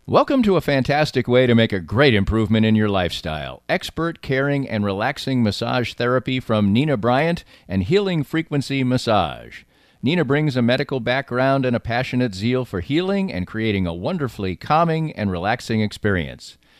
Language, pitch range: English, 100-140 Hz